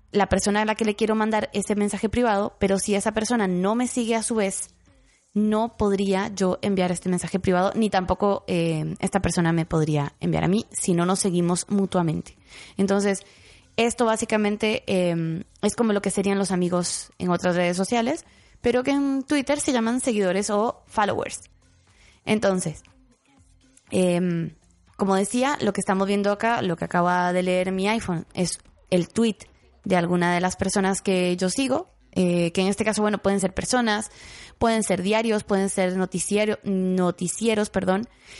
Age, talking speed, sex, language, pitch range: 20-39, 175 wpm, female, Spanish, 180-215 Hz